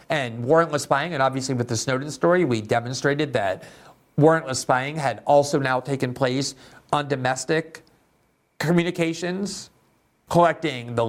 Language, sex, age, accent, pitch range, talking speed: English, male, 50-69, American, 130-175 Hz, 130 wpm